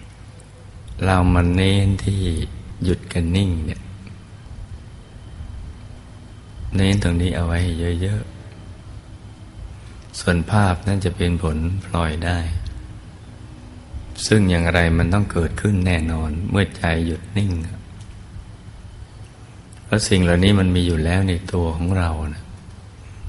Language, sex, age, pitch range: Thai, male, 60-79, 85-100 Hz